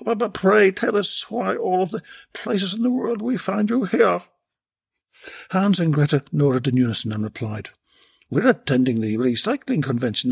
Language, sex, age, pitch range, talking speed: English, male, 60-79, 130-215 Hz, 170 wpm